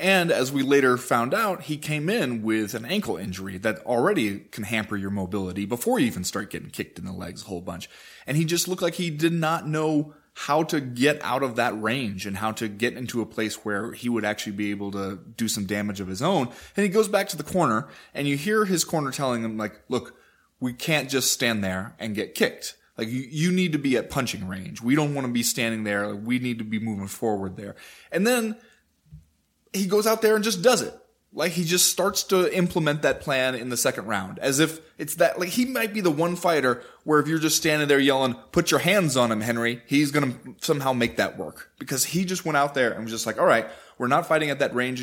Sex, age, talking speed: male, 20-39, 245 wpm